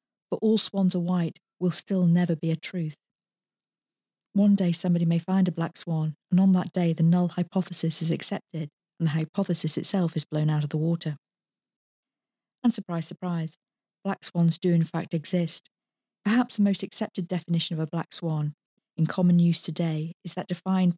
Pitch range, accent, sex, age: 165-190 Hz, British, female, 40-59